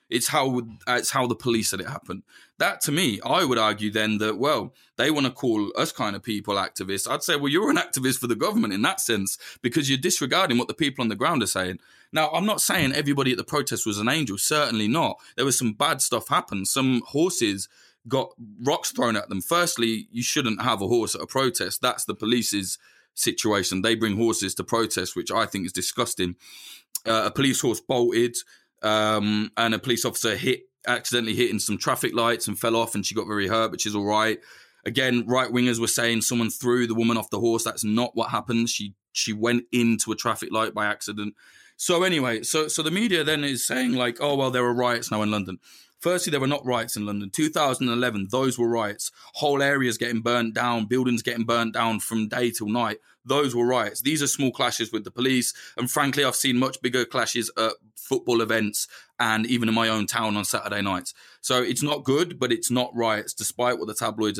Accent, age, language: British, 20-39, English